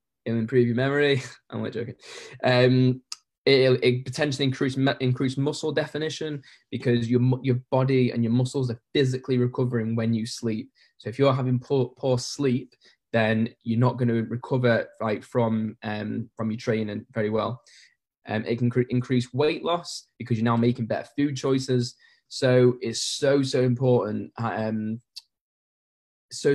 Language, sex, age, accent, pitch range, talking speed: English, male, 10-29, British, 115-135 Hz, 155 wpm